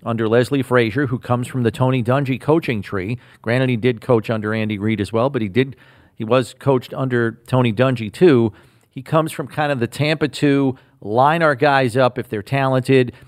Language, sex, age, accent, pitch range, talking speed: English, male, 40-59, American, 115-140 Hz, 200 wpm